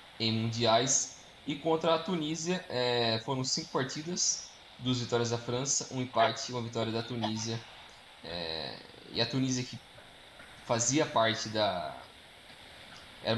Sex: male